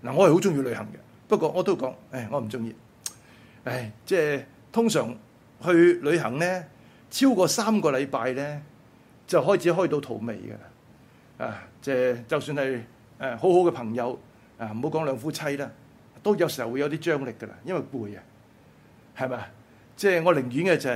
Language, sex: Chinese, male